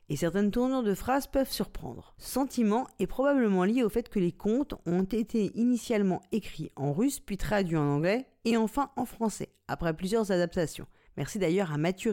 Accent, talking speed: French, 190 wpm